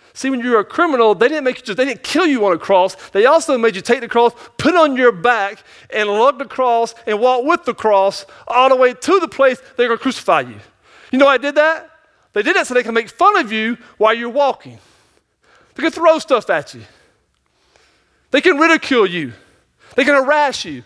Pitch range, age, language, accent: 225-305 Hz, 40-59, English, American